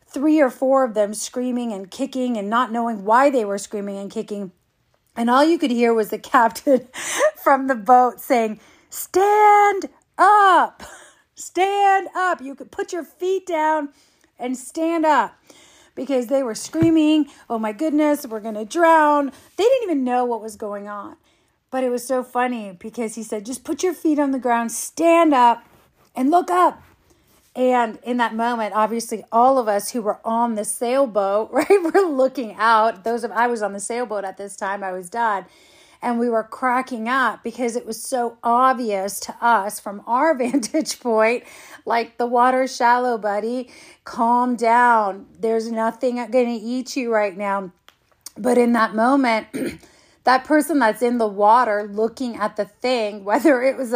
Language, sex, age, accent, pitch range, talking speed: English, female, 40-59, American, 220-275 Hz, 175 wpm